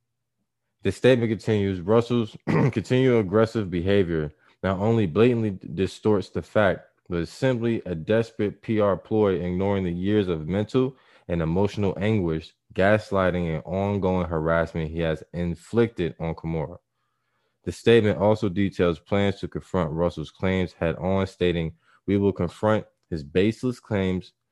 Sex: male